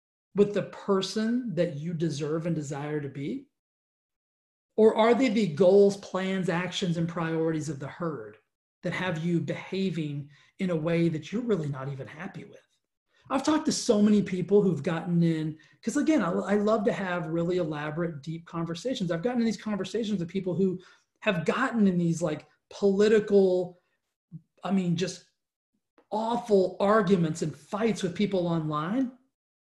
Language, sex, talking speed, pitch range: English, male, 160 wpm, 160-210 Hz